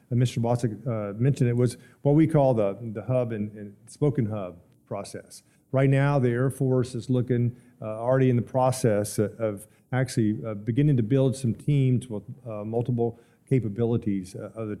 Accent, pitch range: American, 110-130 Hz